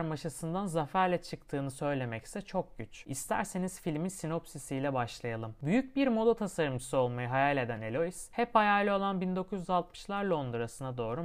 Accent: native